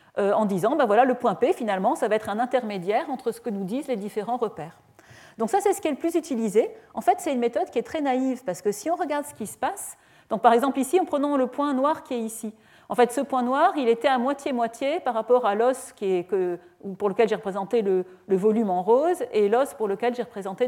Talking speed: 265 wpm